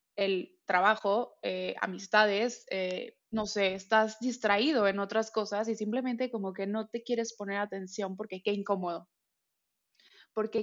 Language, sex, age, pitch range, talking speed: Spanish, female, 20-39, 195-220 Hz, 140 wpm